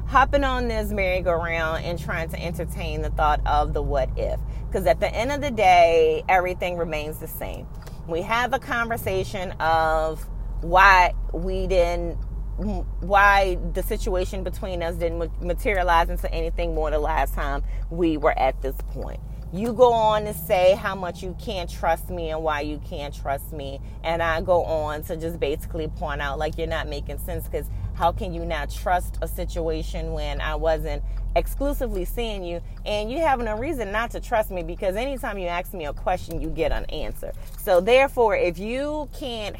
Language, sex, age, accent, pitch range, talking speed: English, female, 30-49, American, 160-225 Hz, 185 wpm